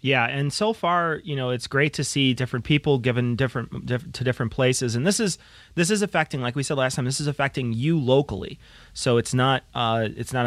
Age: 30-49